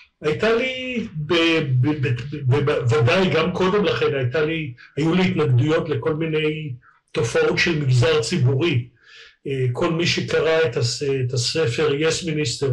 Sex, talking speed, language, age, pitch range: male, 125 wpm, Hebrew, 50-69, 135-165 Hz